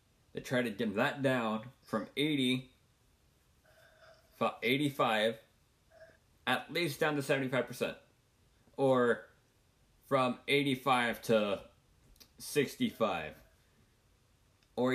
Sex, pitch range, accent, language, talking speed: male, 110-135 Hz, American, English, 85 wpm